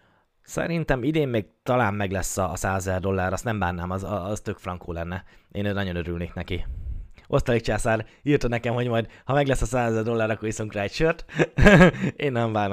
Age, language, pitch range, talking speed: 20-39, Hungarian, 95-115 Hz, 185 wpm